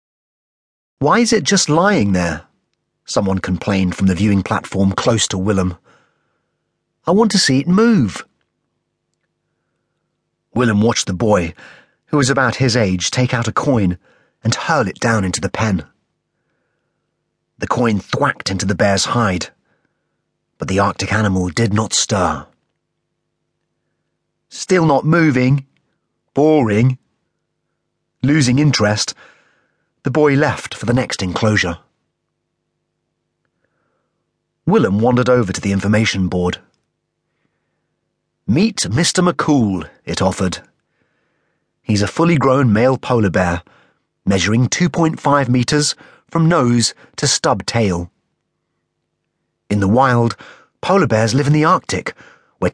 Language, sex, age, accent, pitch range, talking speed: English, male, 30-49, British, 100-150 Hz, 120 wpm